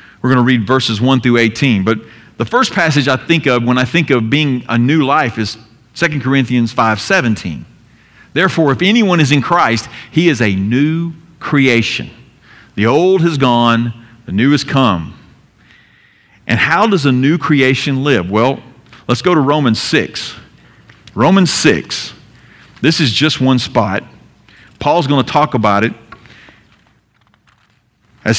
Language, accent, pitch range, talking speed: English, American, 115-155 Hz, 155 wpm